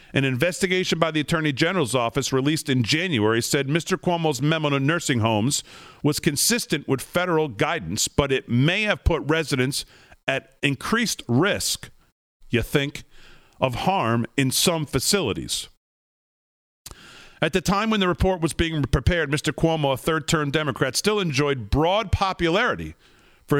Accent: American